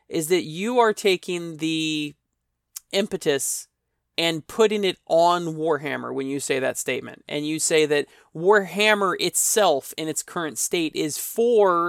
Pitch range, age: 150-200 Hz, 20-39